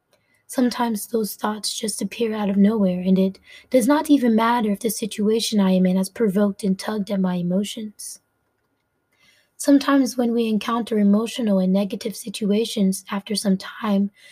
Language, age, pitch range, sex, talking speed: English, 20-39, 200-255 Hz, female, 160 wpm